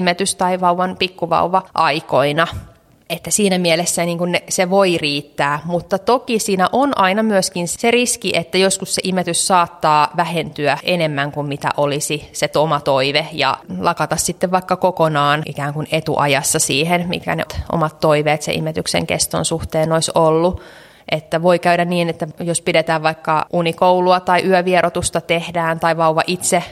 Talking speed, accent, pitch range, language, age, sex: 145 wpm, native, 155-180 Hz, Finnish, 20-39, female